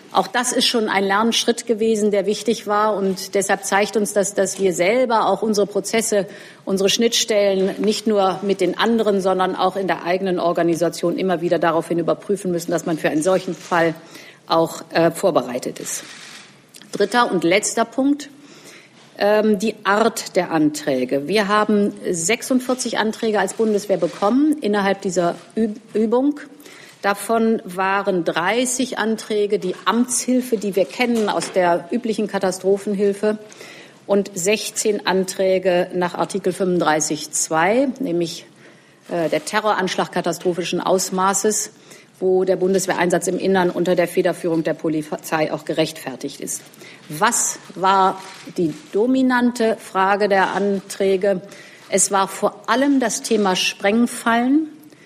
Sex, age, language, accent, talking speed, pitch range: female, 50-69, German, German, 130 wpm, 180-220 Hz